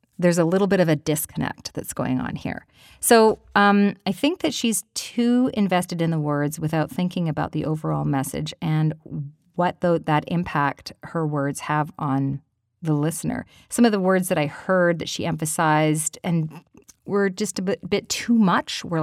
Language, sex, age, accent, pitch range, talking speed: English, female, 40-59, American, 150-195 Hz, 180 wpm